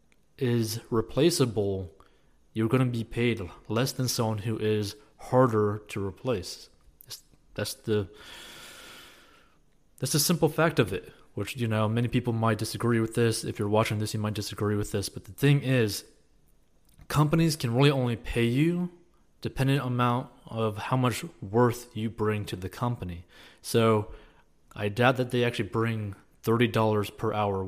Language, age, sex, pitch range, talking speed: English, 20-39, male, 100-120 Hz, 155 wpm